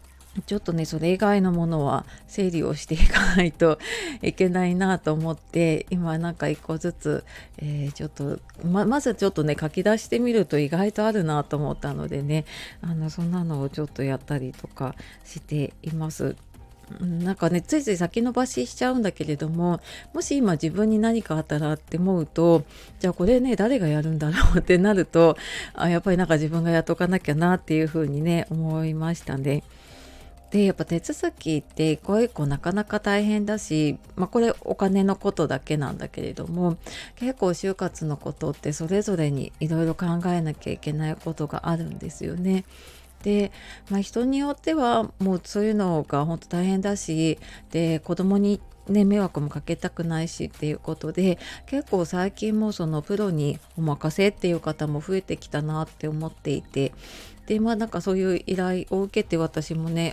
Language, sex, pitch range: Japanese, female, 155-195 Hz